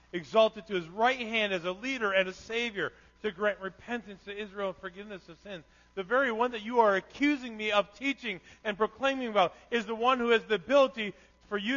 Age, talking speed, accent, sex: 40-59, 215 wpm, American, male